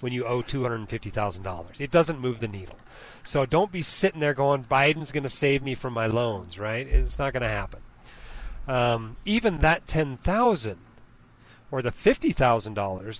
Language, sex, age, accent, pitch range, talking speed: English, male, 40-59, American, 115-150 Hz, 165 wpm